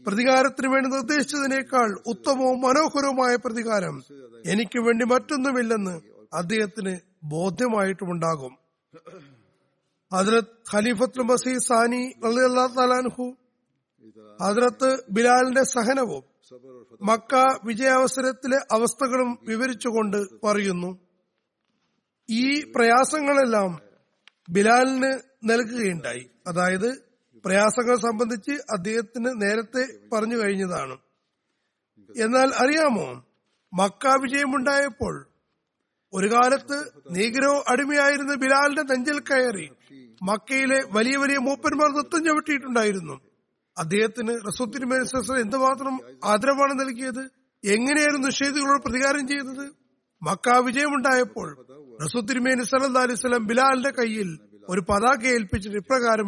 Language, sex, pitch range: Malayalam, male, 205-265 Hz